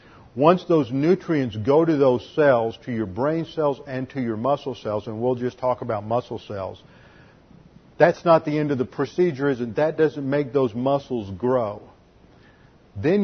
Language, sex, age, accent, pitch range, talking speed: English, male, 50-69, American, 120-150 Hz, 170 wpm